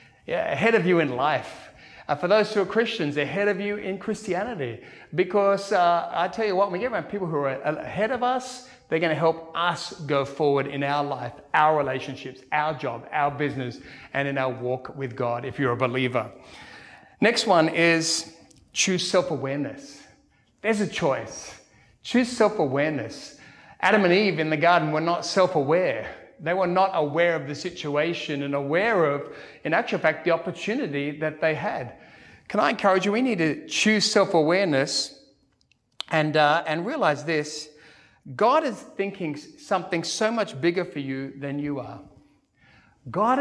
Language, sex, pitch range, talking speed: English, male, 145-195 Hz, 175 wpm